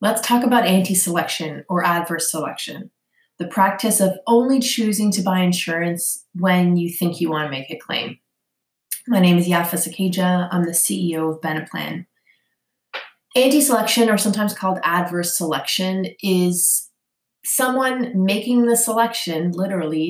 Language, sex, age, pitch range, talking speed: English, female, 20-39, 175-225 Hz, 135 wpm